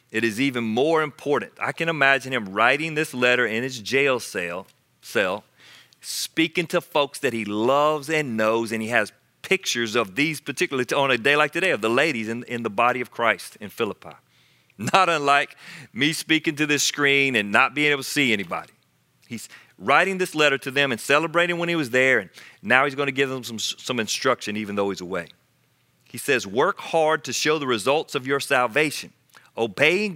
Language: English